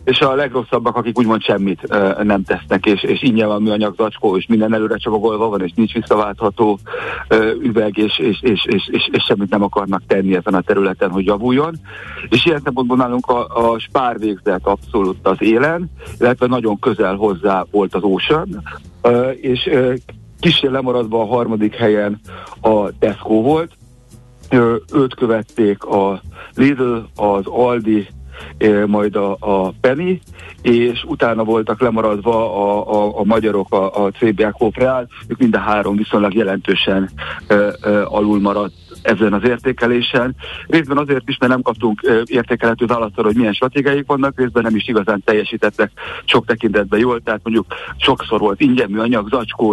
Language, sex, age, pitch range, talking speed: Hungarian, male, 60-79, 105-125 Hz, 160 wpm